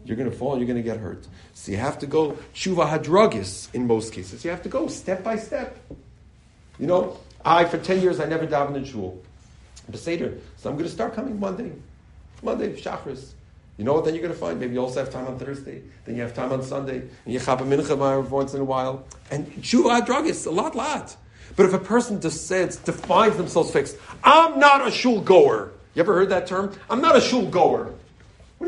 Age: 40-59